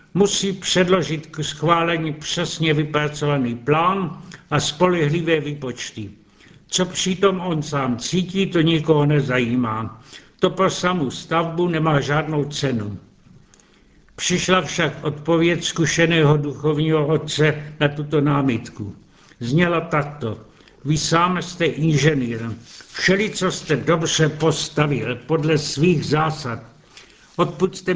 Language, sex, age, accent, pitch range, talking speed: Czech, male, 70-89, native, 145-170 Hz, 105 wpm